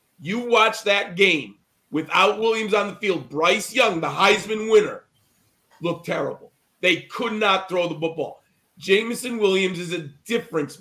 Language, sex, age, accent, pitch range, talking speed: English, male, 40-59, American, 160-200 Hz, 150 wpm